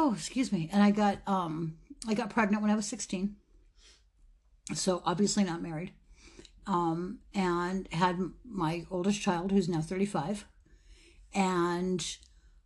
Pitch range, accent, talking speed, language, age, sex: 170-205 Hz, American, 135 wpm, English, 60-79, female